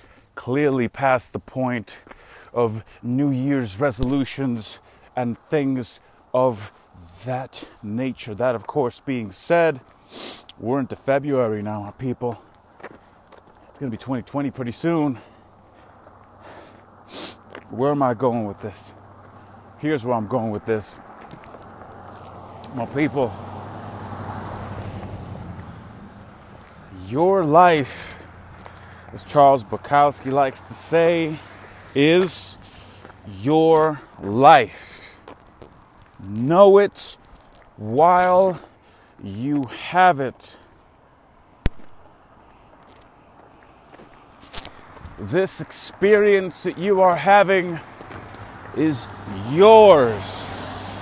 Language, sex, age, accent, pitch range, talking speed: English, male, 30-49, American, 100-145 Hz, 80 wpm